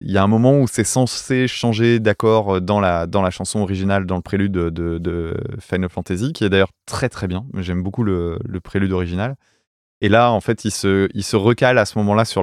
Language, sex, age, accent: French, male, 20-39, French